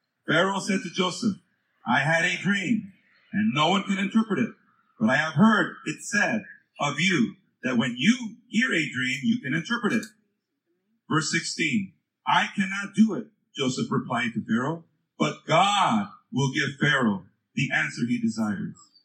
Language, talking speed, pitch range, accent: English, 160 wpm, 175-225 Hz, American